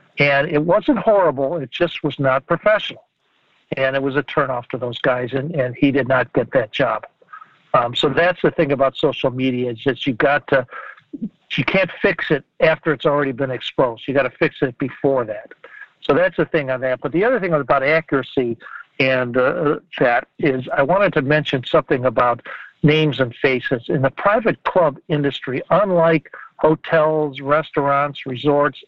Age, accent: 60-79, American